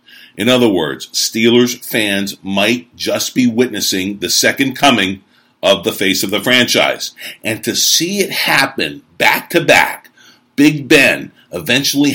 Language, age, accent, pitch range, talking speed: English, 50-69, American, 95-135 Hz, 145 wpm